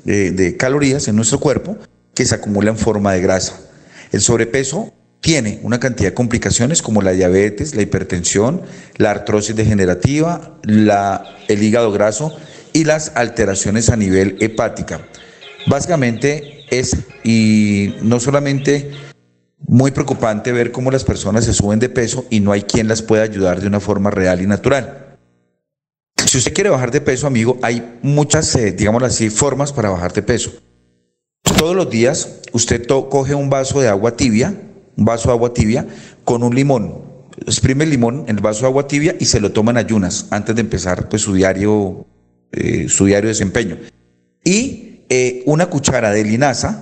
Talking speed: 170 wpm